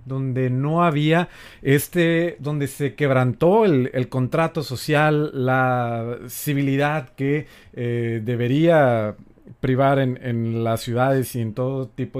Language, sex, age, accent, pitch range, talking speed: Spanish, male, 40-59, Mexican, 120-160 Hz, 125 wpm